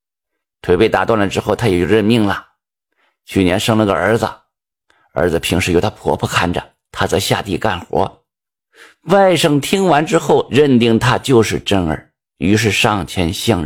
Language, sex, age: Chinese, male, 50-69